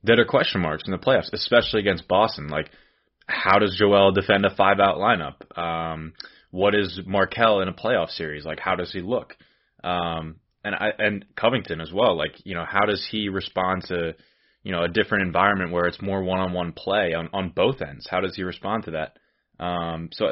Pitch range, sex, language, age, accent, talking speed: 85-105 Hz, male, English, 20-39, American, 200 wpm